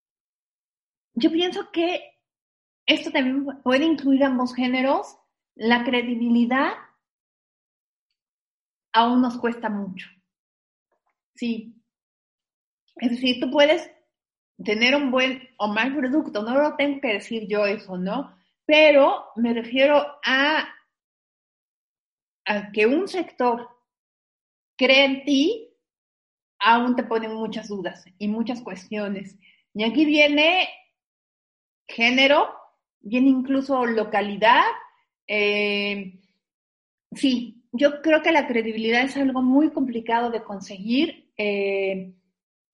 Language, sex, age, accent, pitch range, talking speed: Spanish, female, 30-49, Mexican, 220-285 Hz, 105 wpm